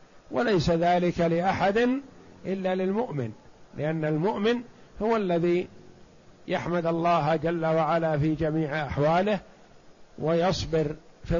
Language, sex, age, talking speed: Arabic, male, 50-69, 95 wpm